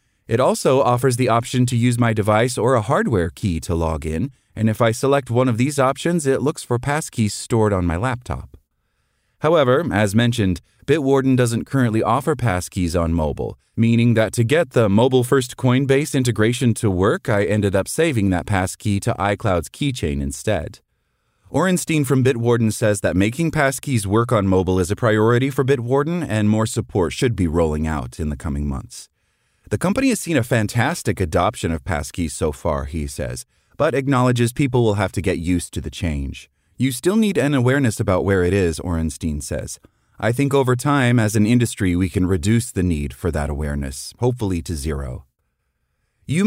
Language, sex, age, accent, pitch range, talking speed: English, male, 30-49, American, 90-130 Hz, 185 wpm